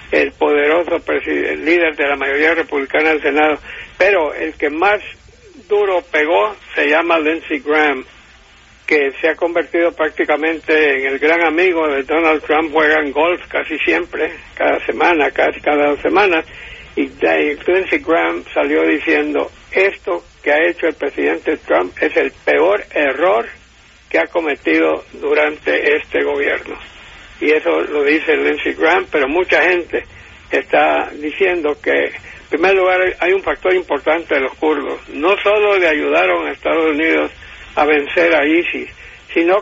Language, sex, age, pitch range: English, male, 60-79, 150-190 Hz